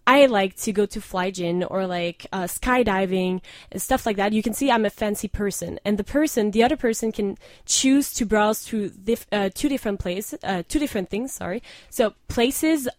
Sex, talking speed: female, 210 wpm